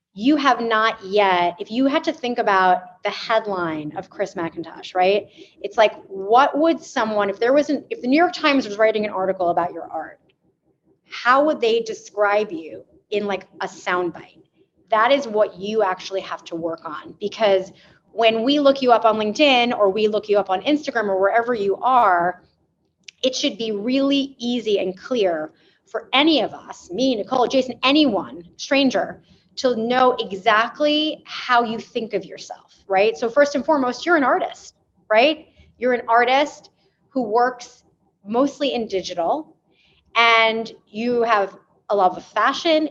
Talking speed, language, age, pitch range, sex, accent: 170 wpm, English, 30-49, 195-260 Hz, female, American